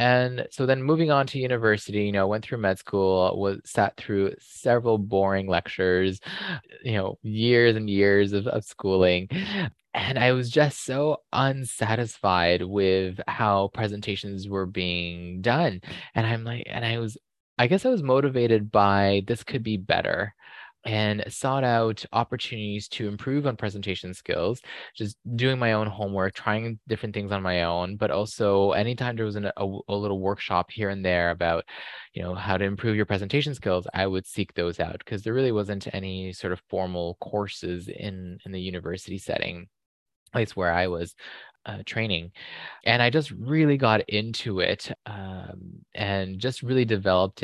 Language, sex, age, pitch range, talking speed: English, male, 20-39, 95-115 Hz, 170 wpm